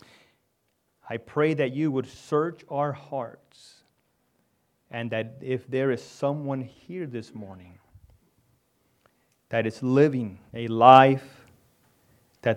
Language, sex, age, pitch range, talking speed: English, male, 30-49, 105-130 Hz, 110 wpm